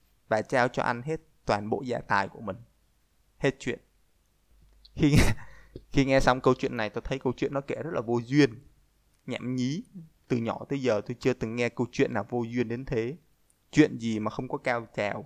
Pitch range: 115-140 Hz